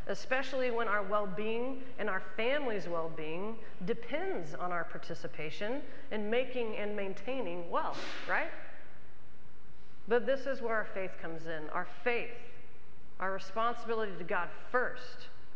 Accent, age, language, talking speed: American, 40-59, English, 125 wpm